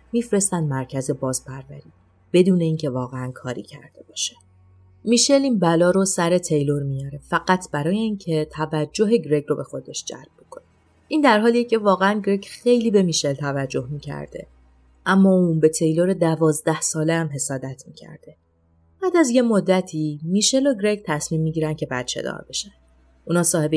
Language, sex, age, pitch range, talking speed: Persian, female, 30-49, 140-190 Hz, 155 wpm